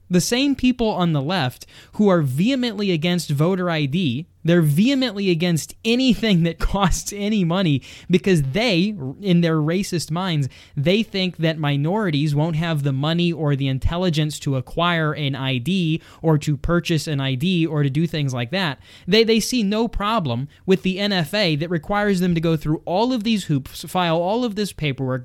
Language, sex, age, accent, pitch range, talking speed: English, male, 20-39, American, 150-195 Hz, 180 wpm